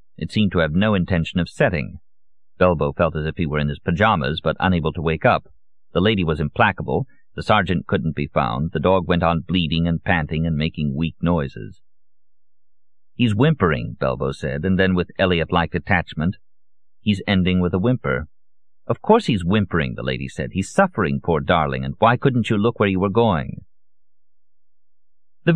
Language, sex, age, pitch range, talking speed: English, male, 50-69, 80-100 Hz, 180 wpm